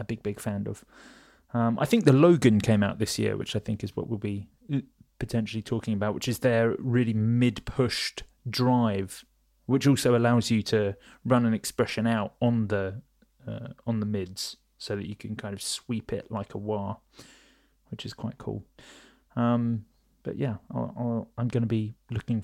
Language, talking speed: English, 185 wpm